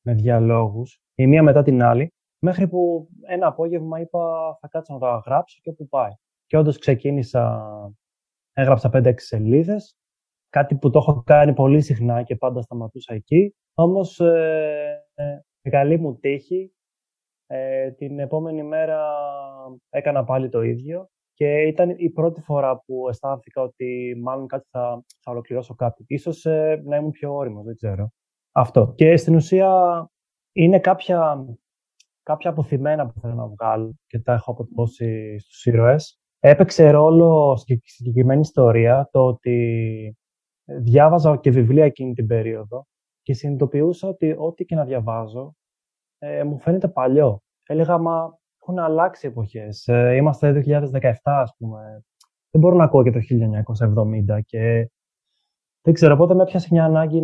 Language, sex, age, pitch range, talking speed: Greek, male, 20-39, 120-160 Hz, 150 wpm